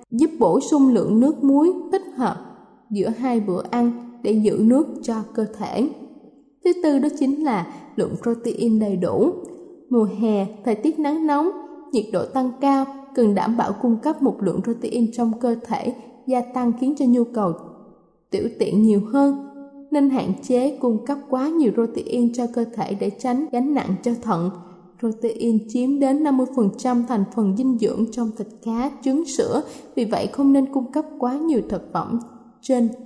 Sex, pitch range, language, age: female, 220-275 Hz, Thai, 10-29